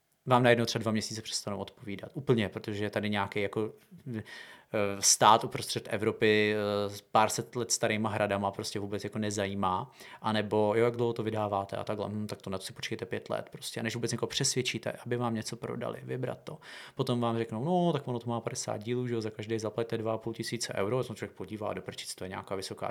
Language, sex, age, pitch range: Czech, male, 30-49, 110-125 Hz